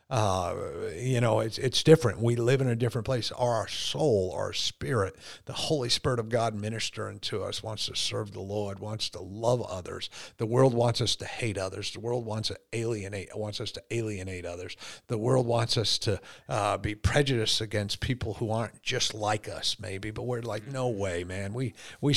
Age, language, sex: 50-69, English, male